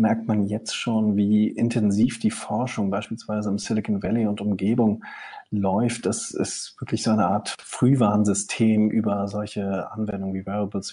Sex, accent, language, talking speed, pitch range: male, German, German, 150 wpm, 100-120 Hz